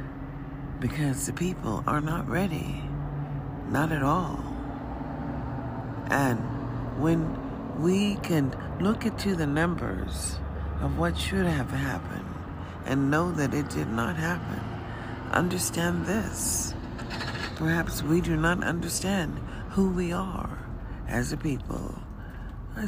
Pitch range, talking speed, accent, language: 105-160 Hz, 115 wpm, American, English